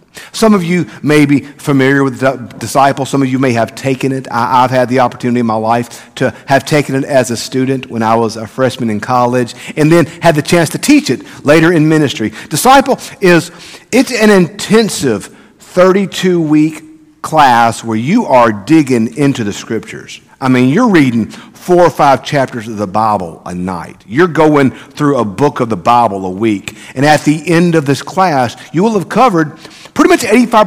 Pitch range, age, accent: 120-175 Hz, 50-69, American